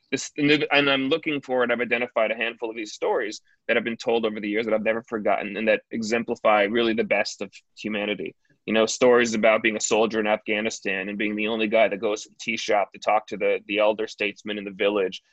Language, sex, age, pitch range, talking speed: English, male, 20-39, 105-135 Hz, 245 wpm